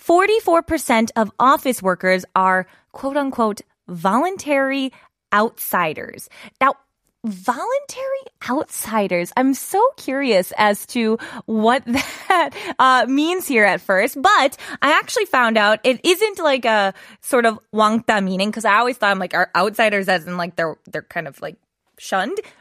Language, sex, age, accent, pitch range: Korean, female, 20-39, American, 195-275 Hz